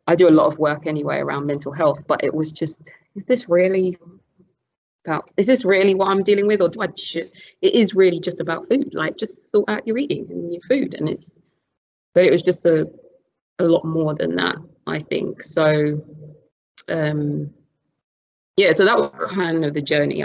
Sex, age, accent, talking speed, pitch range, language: female, 20-39, British, 200 wpm, 150-175 Hz, English